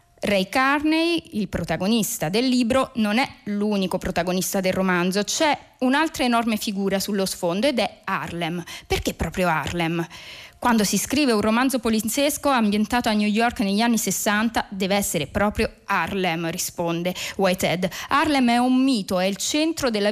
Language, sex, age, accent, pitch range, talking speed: Italian, female, 20-39, native, 190-255 Hz, 150 wpm